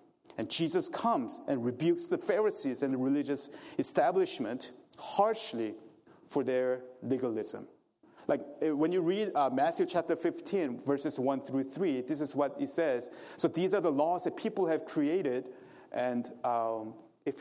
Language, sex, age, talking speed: English, male, 40-59, 150 wpm